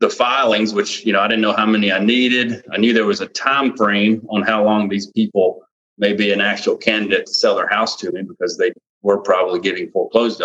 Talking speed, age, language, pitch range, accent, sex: 235 wpm, 30-49, English, 100-120 Hz, American, male